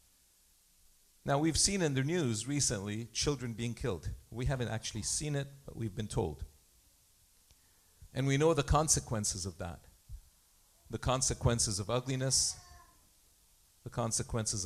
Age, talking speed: 50-69, 130 wpm